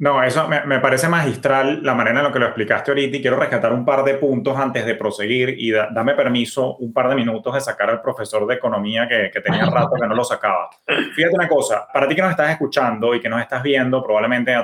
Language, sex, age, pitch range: Spanish, male, 20-39, 120-140 Hz